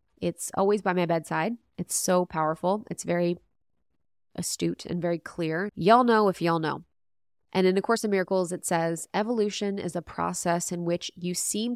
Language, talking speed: English, 180 wpm